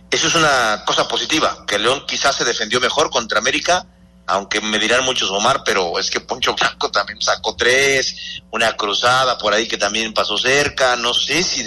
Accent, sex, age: Mexican, male, 50-69